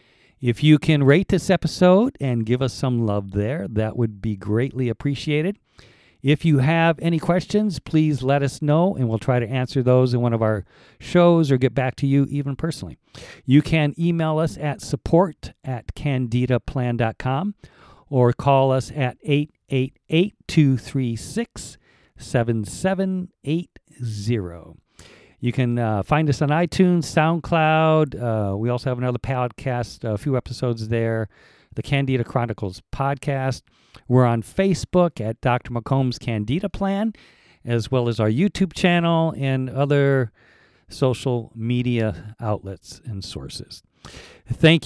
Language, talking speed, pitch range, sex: English, 135 wpm, 120-155 Hz, male